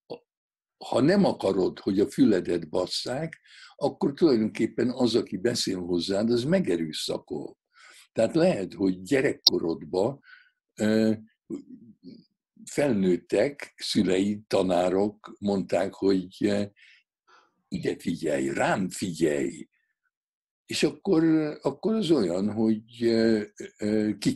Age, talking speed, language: 60-79, 85 wpm, Hungarian